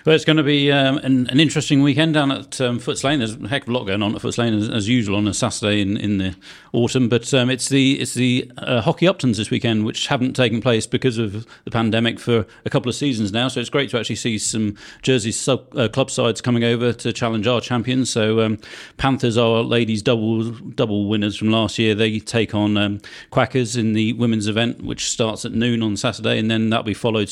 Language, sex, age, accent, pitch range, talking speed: English, male, 40-59, British, 110-130 Hz, 245 wpm